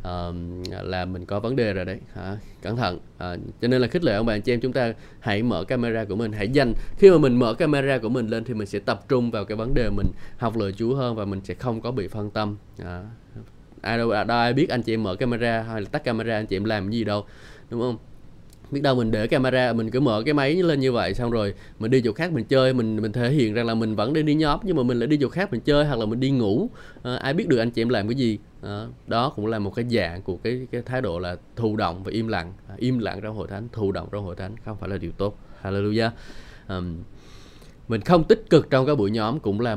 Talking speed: 280 wpm